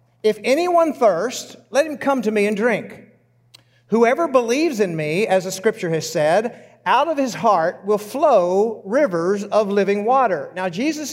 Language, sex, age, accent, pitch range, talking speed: English, male, 50-69, American, 195-250 Hz, 165 wpm